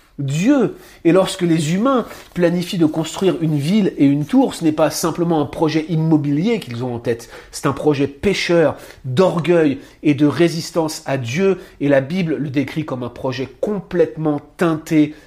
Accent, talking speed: French, 175 wpm